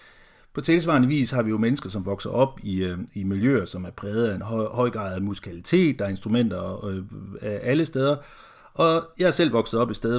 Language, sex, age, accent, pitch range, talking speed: Danish, male, 60-79, native, 105-140 Hz, 235 wpm